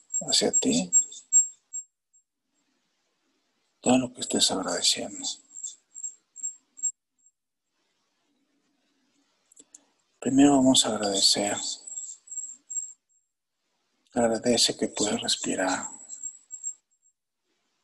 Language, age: Spanish, 60-79